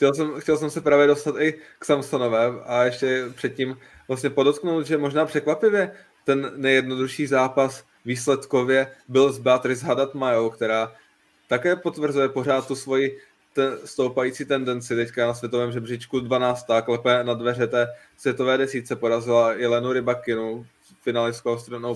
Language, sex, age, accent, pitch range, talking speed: Czech, male, 20-39, native, 120-135 Hz, 140 wpm